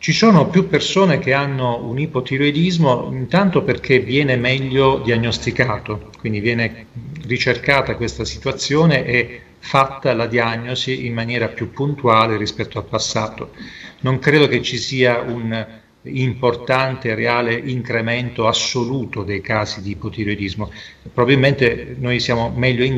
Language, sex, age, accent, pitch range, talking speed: Italian, male, 40-59, native, 110-130 Hz, 125 wpm